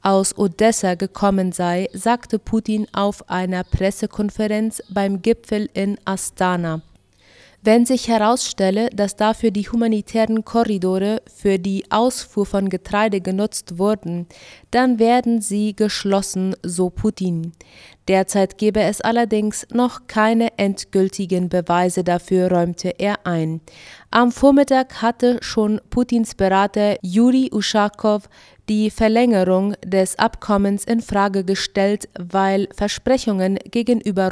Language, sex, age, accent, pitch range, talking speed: German, female, 30-49, German, 185-220 Hz, 110 wpm